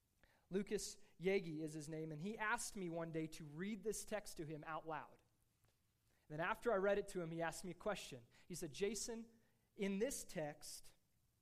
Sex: male